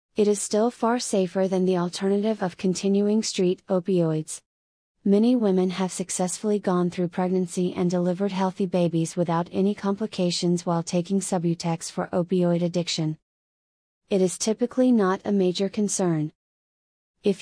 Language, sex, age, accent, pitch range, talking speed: English, female, 30-49, American, 175-200 Hz, 140 wpm